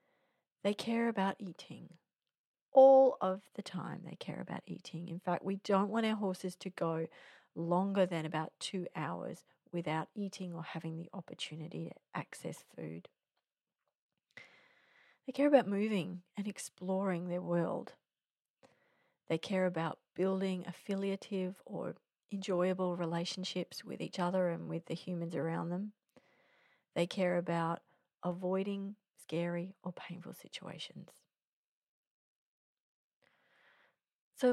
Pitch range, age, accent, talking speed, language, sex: 175-200 Hz, 40-59, Australian, 120 wpm, English, female